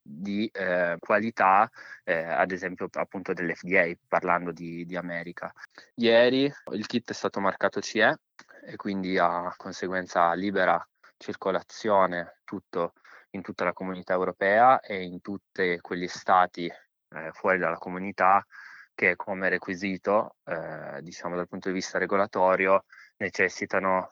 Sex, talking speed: male, 125 wpm